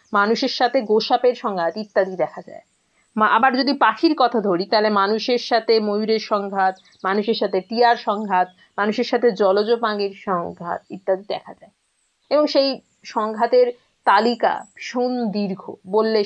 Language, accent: English, Indian